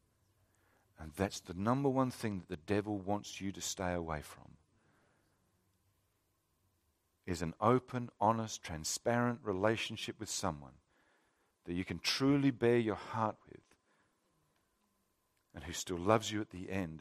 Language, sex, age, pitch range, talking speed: English, male, 50-69, 90-125 Hz, 140 wpm